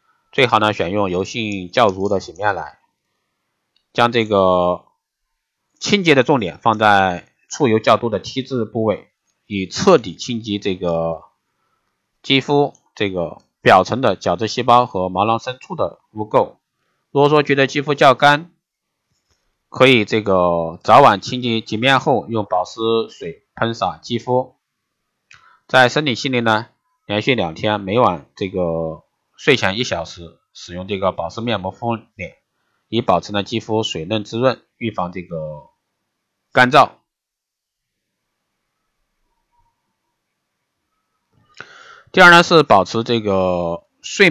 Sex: male